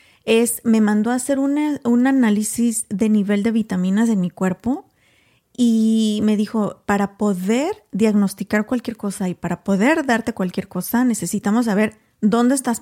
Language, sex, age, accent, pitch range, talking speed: Spanish, female, 30-49, Mexican, 205-240 Hz, 155 wpm